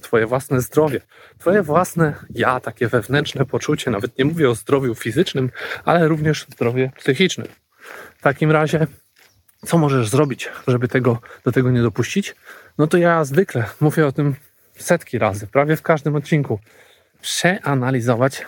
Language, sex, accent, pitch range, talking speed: Polish, male, native, 120-150 Hz, 150 wpm